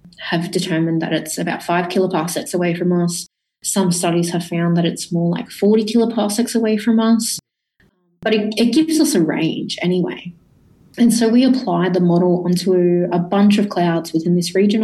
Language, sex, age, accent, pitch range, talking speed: English, female, 20-39, Australian, 165-195 Hz, 180 wpm